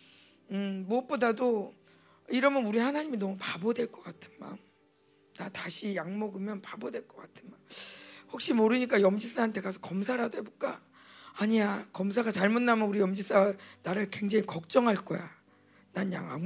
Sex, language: female, Korean